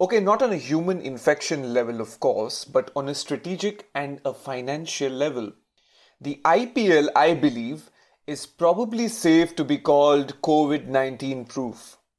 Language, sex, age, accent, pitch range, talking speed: English, male, 30-49, Indian, 135-175 Hz, 145 wpm